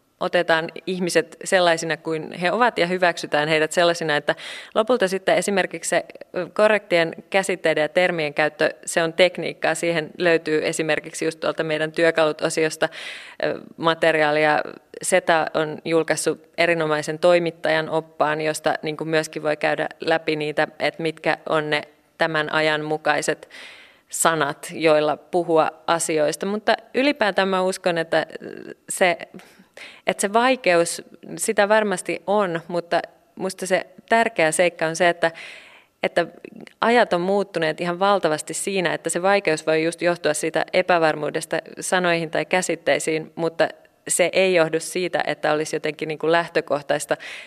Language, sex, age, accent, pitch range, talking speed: Finnish, female, 30-49, native, 155-180 Hz, 130 wpm